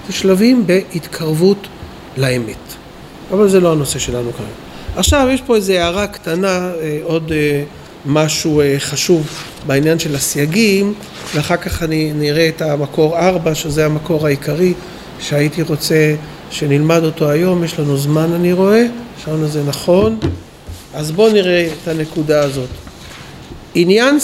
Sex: male